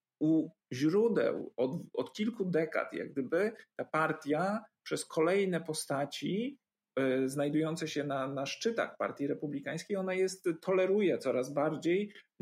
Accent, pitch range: native, 150-185 Hz